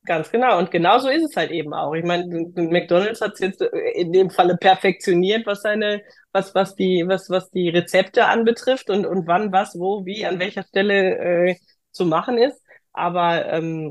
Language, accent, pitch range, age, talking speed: German, German, 175-215 Hz, 20-39, 190 wpm